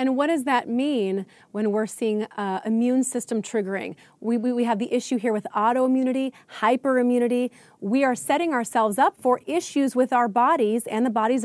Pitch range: 215-260 Hz